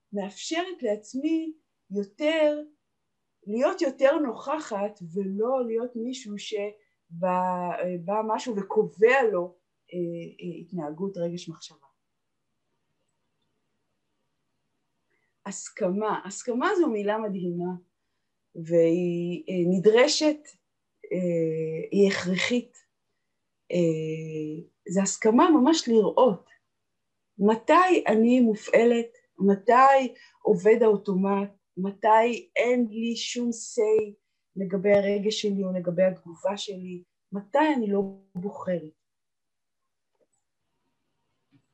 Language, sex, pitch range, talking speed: Hebrew, female, 180-245 Hz, 80 wpm